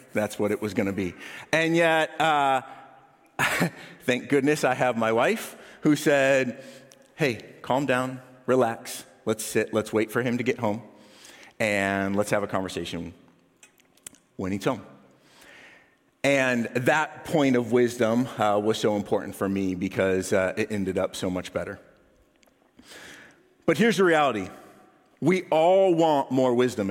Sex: male